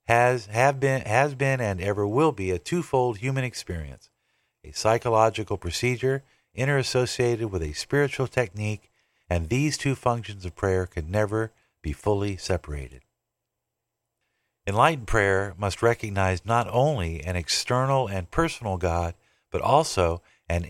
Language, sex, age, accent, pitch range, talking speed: English, male, 50-69, American, 90-120 Hz, 135 wpm